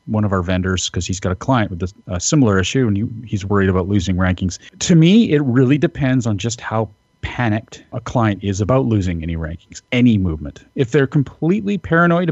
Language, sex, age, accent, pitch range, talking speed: English, male, 40-59, American, 105-130 Hz, 200 wpm